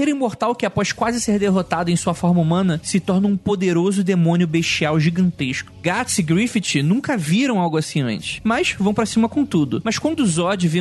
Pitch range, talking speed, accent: 160-205 Hz, 195 wpm, Brazilian